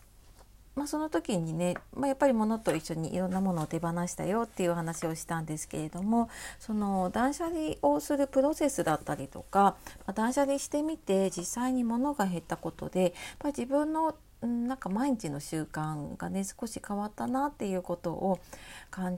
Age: 30-49